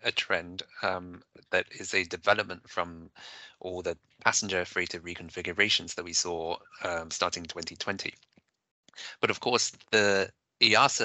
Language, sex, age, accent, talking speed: English, male, 30-49, British, 130 wpm